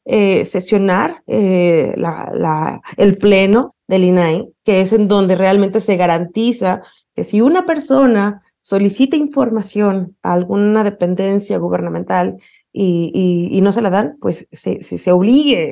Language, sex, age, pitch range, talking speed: Spanish, female, 30-49, 190-240 Hz, 135 wpm